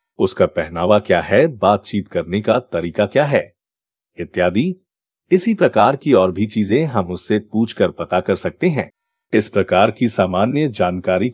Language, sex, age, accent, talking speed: Hindi, male, 50-69, native, 155 wpm